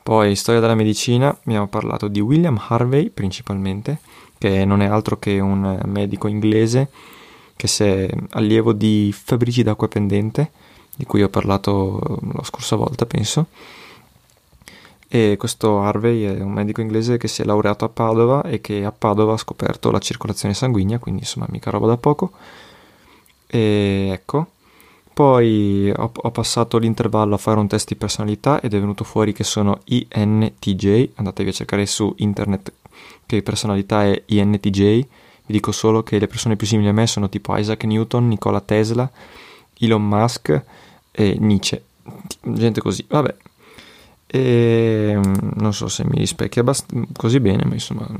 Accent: native